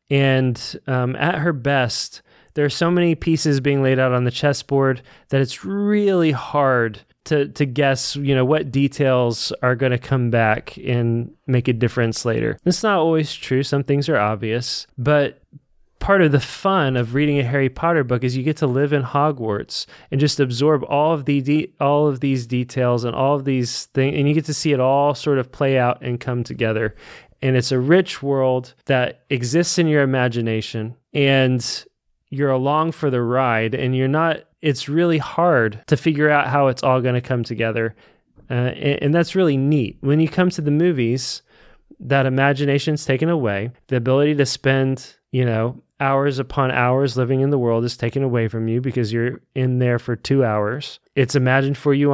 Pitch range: 125-145 Hz